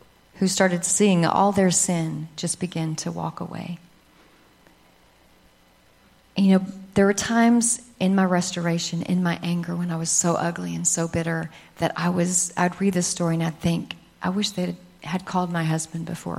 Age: 40-59